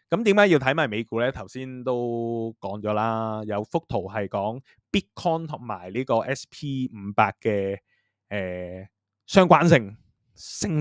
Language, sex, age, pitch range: Chinese, male, 20-39, 105-135 Hz